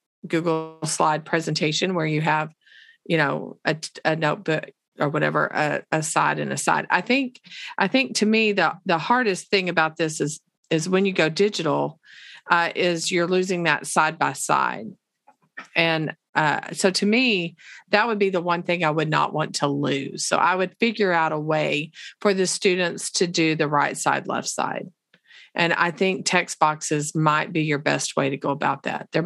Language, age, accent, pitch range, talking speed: English, 40-59, American, 155-195 Hz, 195 wpm